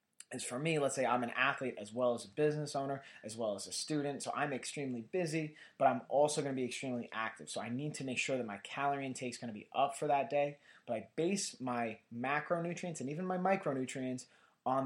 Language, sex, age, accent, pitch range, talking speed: English, male, 20-39, American, 120-150 Hz, 240 wpm